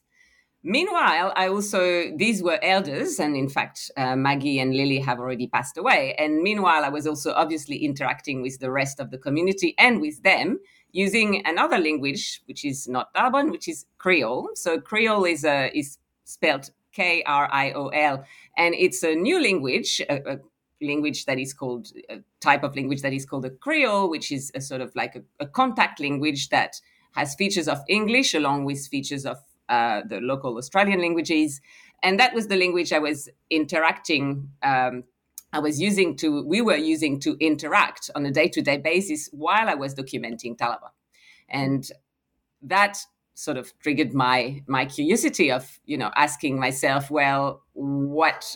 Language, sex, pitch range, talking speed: English, female, 135-185 Hz, 175 wpm